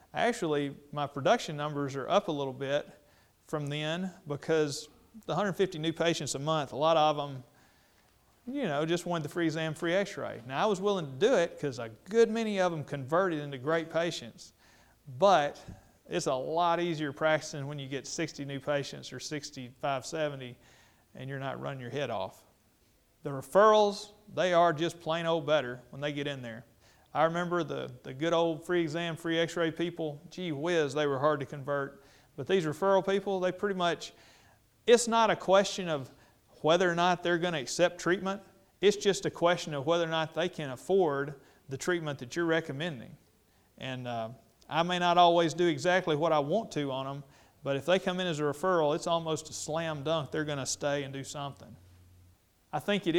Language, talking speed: English, 195 wpm